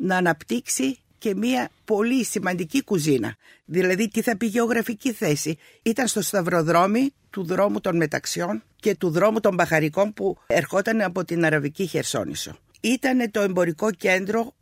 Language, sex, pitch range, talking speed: Greek, female, 170-230 Hz, 145 wpm